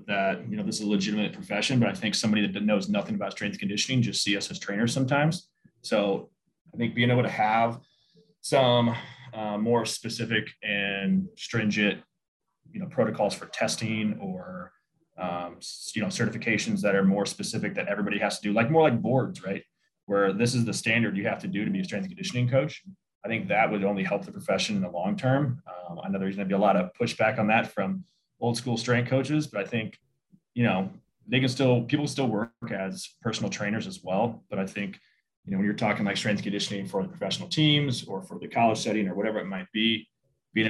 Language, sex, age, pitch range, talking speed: English, male, 20-39, 100-140 Hz, 220 wpm